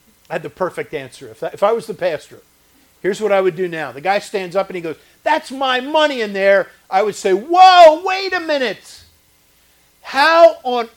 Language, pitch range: English, 155-235 Hz